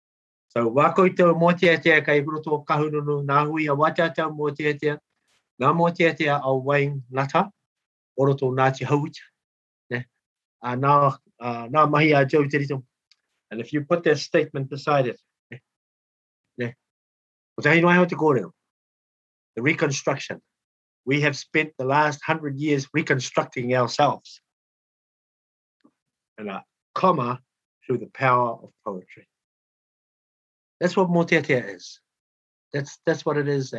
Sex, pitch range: male, 120-155 Hz